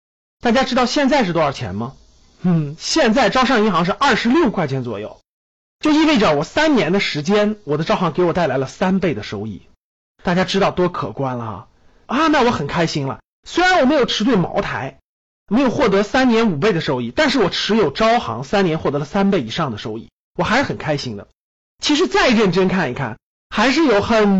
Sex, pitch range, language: male, 160-250 Hz, Chinese